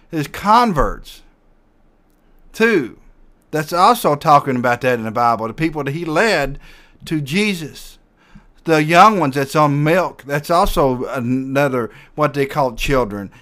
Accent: American